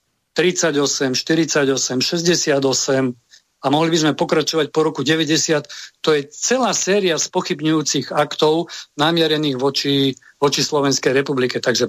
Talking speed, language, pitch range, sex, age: 120 wpm, Slovak, 135-165 Hz, male, 50-69